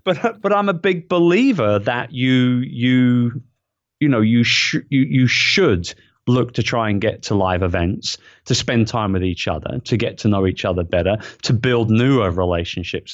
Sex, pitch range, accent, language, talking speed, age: male, 105-135 Hz, British, English, 185 wpm, 30-49